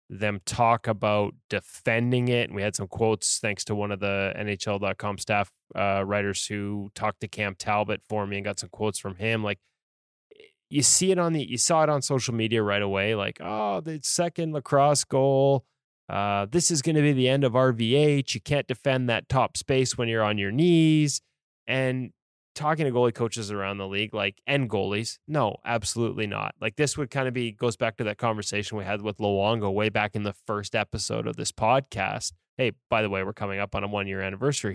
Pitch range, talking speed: 100-125 Hz, 210 wpm